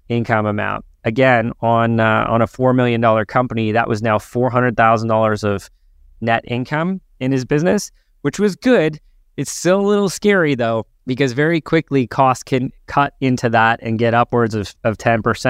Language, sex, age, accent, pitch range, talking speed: English, male, 20-39, American, 110-135 Hz, 165 wpm